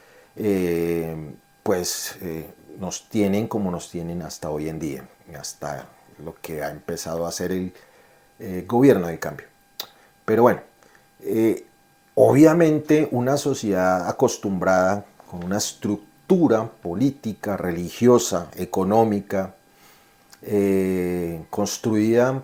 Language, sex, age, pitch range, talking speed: Spanish, male, 40-59, 90-120 Hz, 105 wpm